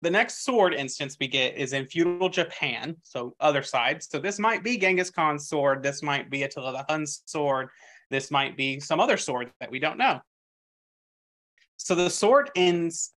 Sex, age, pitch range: male, 20-39, 130-170 Hz